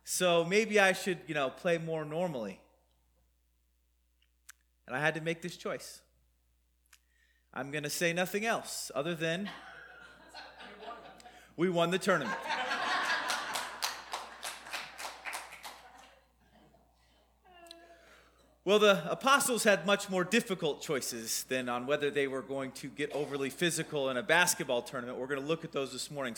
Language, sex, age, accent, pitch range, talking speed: English, male, 30-49, American, 145-200 Hz, 130 wpm